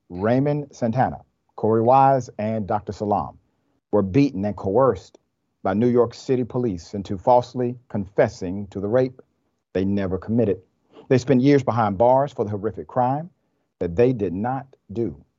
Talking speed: 150 wpm